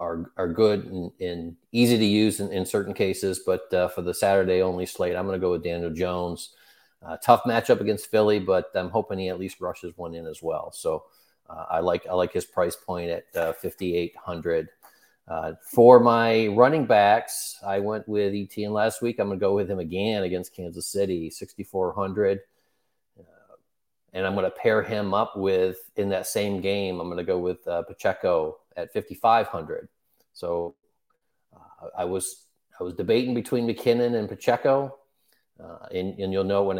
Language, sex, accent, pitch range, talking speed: English, male, American, 90-105 Hz, 190 wpm